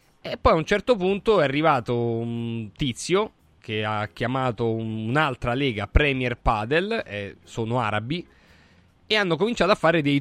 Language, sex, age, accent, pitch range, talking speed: Italian, male, 30-49, native, 115-160 Hz, 155 wpm